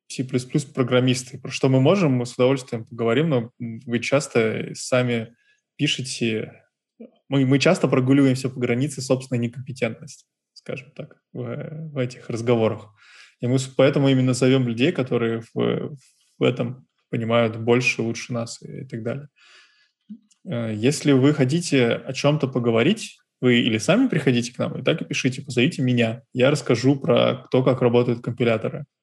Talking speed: 140 wpm